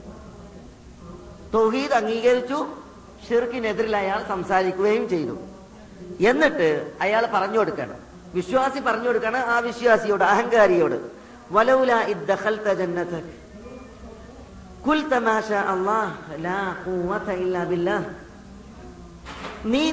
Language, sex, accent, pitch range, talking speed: Malayalam, female, native, 190-250 Hz, 50 wpm